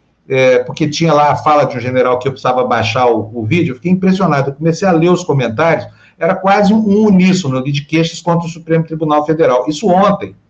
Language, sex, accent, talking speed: Portuguese, male, Brazilian, 215 wpm